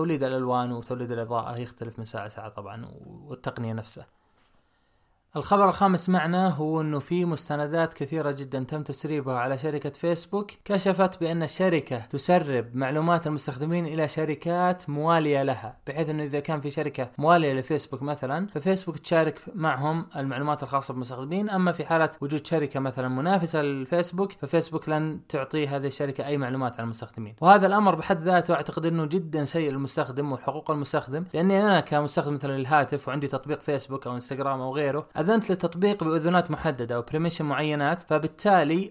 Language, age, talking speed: Arabic, 20-39, 155 wpm